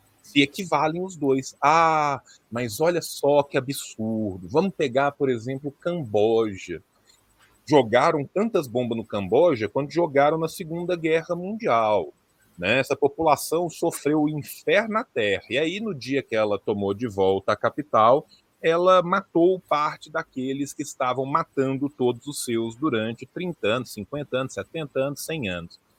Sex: male